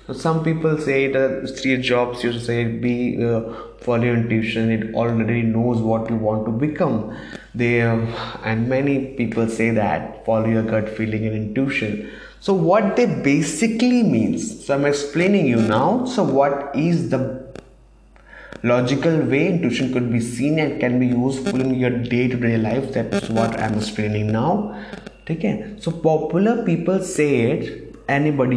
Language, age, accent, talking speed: English, 20-39, Indian, 155 wpm